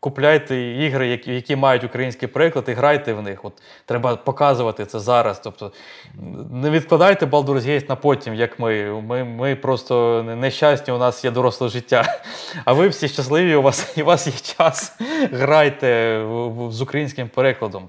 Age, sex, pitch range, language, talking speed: 20-39, male, 115-140 Hz, Ukrainian, 160 wpm